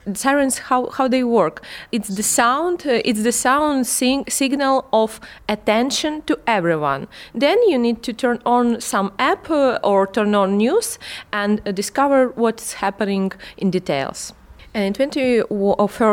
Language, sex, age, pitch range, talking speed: English, female, 20-39, 195-230 Hz, 145 wpm